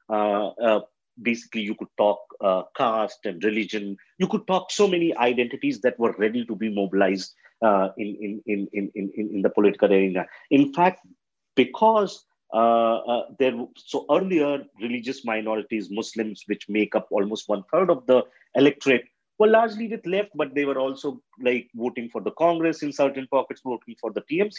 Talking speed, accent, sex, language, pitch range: 180 wpm, Indian, male, English, 110-170 Hz